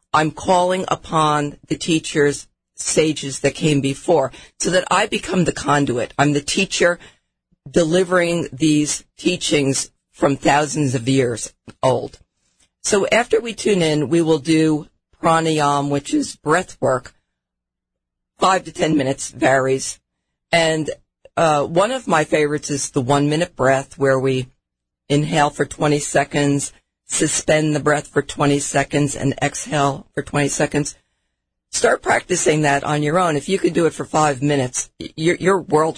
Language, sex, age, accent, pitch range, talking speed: English, female, 50-69, American, 140-170 Hz, 145 wpm